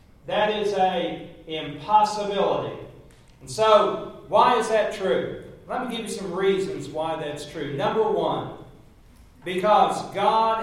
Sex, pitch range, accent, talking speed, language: male, 170-215 Hz, American, 130 wpm, English